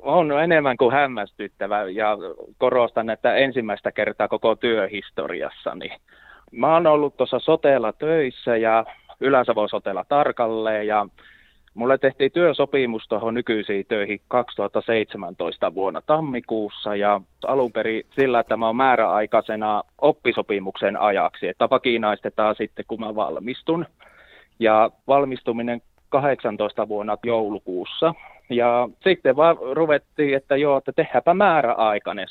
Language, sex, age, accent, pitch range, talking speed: Finnish, male, 20-39, native, 115-145 Hz, 115 wpm